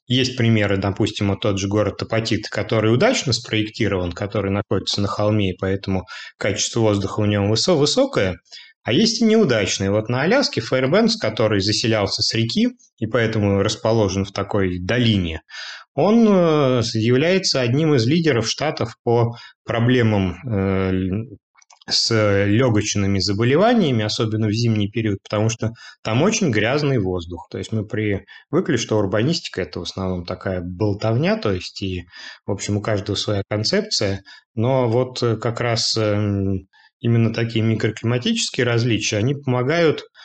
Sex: male